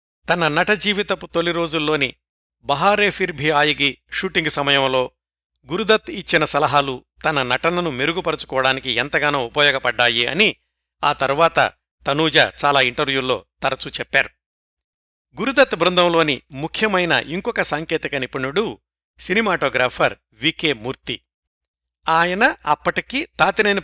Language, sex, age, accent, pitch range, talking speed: Telugu, male, 50-69, native, 130-180 Hz, 95 wpm